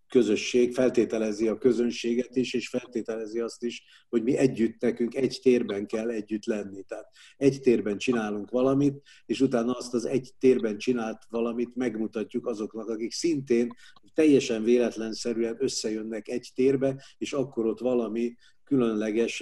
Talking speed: 140 wpm